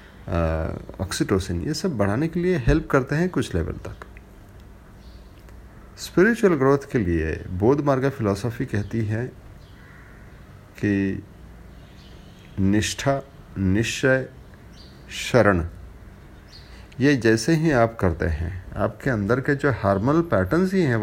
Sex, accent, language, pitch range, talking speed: male, native, Hindi, 95-140 Hz, 110 wpm